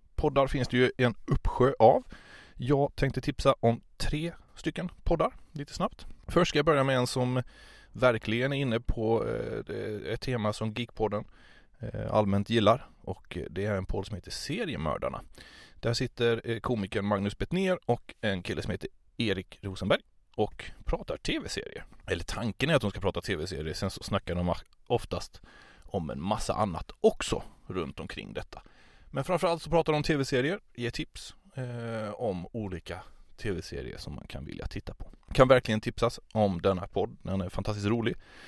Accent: Swedish